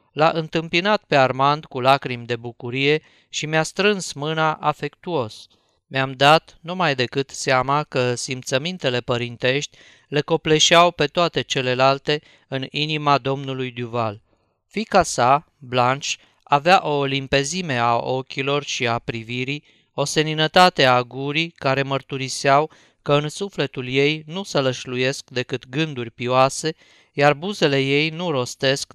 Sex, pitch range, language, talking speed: male, 130-155 Hz, Romanian, 130 wpm